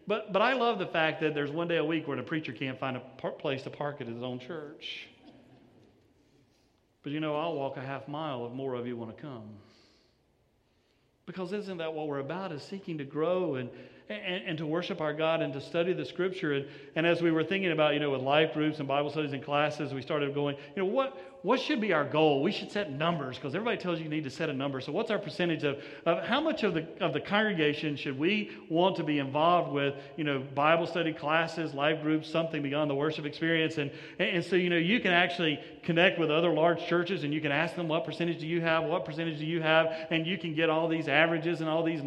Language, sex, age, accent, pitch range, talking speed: English, male, 40-59, American, 145-190 Hz, 250 wpm